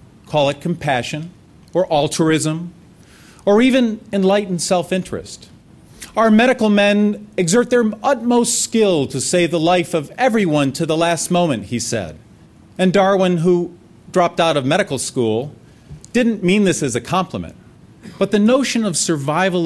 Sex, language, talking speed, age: male, English, 145 wpm, 40-59